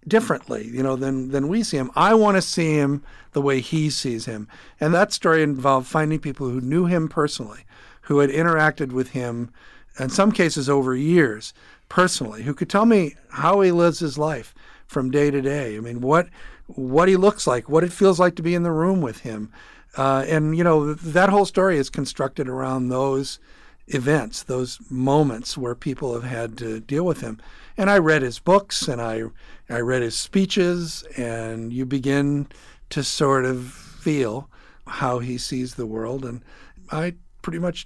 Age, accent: 50-69, American